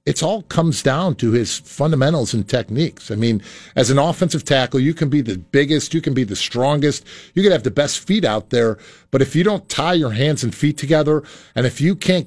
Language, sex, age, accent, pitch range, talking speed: English, male, 50-69, American, 135-170 Hz, 230 wpm